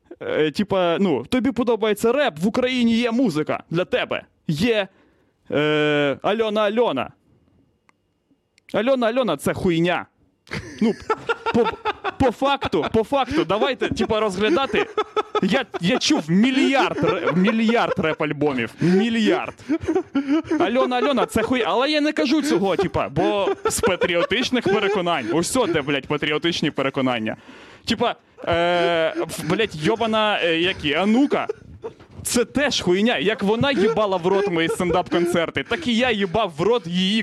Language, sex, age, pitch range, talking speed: Ukrainian, male, 20-39, 170-240 Hz, 130 wpm